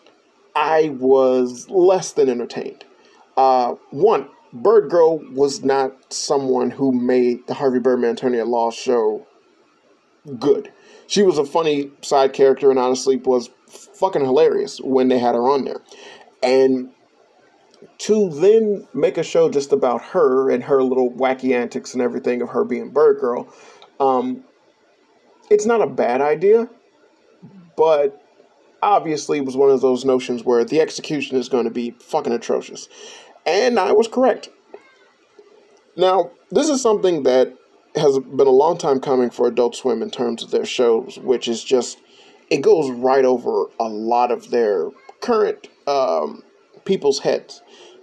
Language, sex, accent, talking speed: English, male, American, 150 wpm